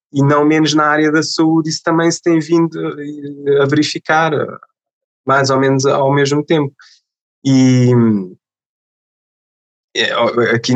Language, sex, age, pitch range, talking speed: Portuguese, male, 20-39, 115-140 Hz, 130 wpm